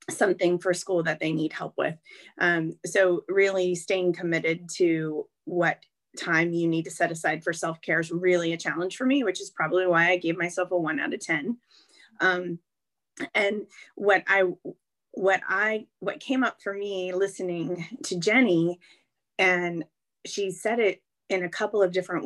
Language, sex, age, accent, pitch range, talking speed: English, female, 20-39, American, 165-200 Hz, 175 wpm